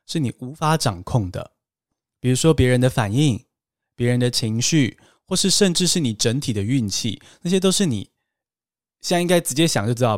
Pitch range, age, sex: 120-170 Hz, 20-39, male